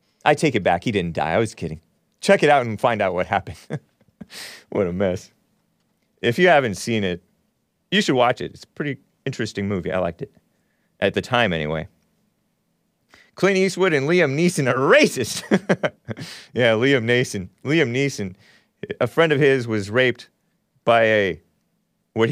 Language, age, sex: English, 30-49, male